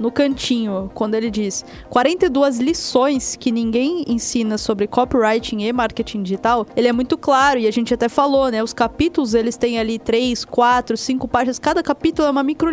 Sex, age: female, 10-29